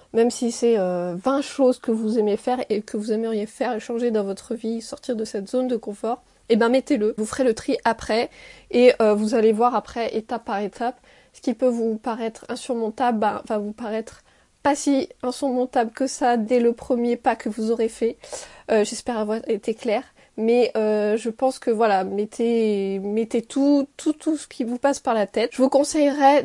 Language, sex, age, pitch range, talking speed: French, female, 20-39, 215-250 Hz, 210 wpm